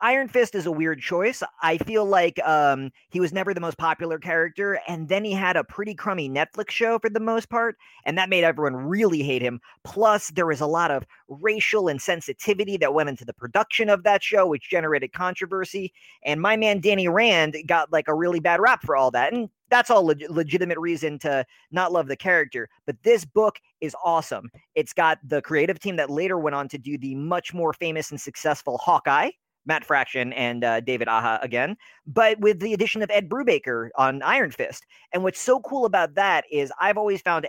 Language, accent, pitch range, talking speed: English, American, 145-195 Hz, 210 wpm